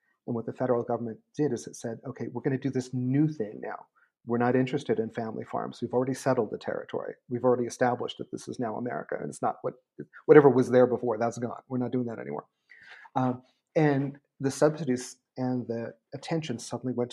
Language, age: English, 40-59